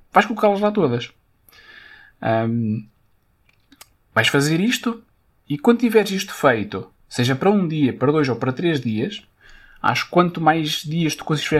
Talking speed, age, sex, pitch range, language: 150 wpm, 20-39, male, 120-170 Hz, Portuguese